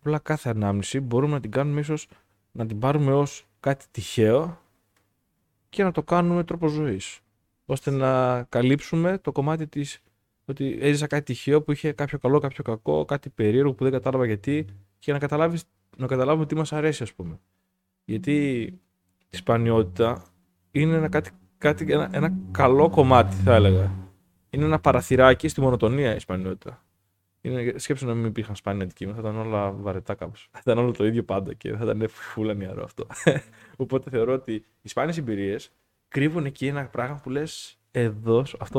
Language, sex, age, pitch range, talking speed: Greek, male, 20-39, 105-145 Hz, 165 wpm